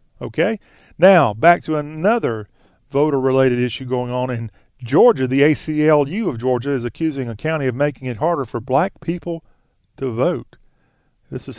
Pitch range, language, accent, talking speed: 120-145 Hz, English, American, 155 wpm